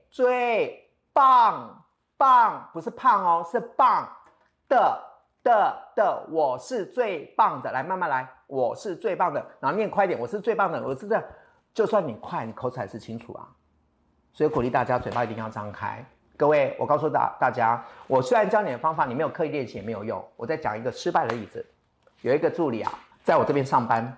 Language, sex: Chinese, male